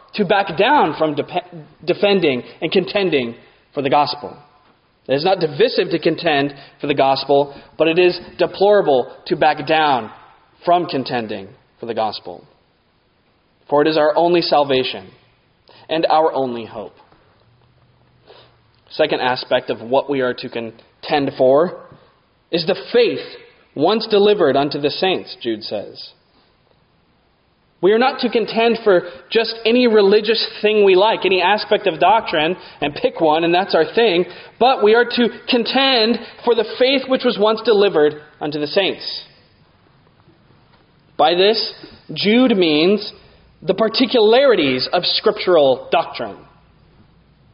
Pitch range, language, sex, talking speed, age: 155-230 Hz, English, male, 135 wpm, 20-39